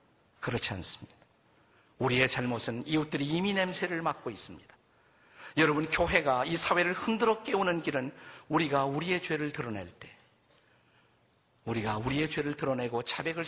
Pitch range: 120-165 Hz